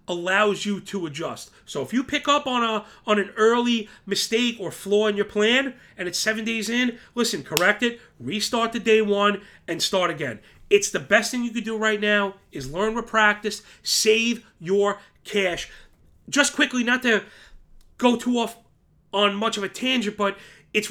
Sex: male